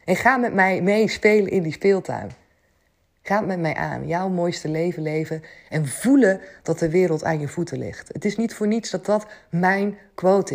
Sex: female